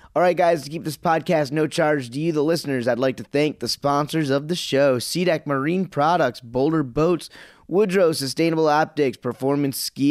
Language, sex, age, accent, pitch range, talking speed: English, male, 20-39, American, 130-170 Hz, 190 wpm